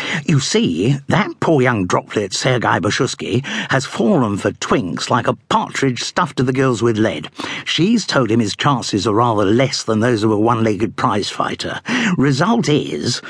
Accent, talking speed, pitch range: British, 175 wpm, 115-175 Hz